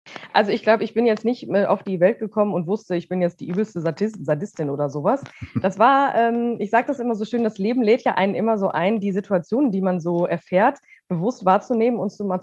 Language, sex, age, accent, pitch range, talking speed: German, female, 20-39, German, 175-225 Hz, 245 wpm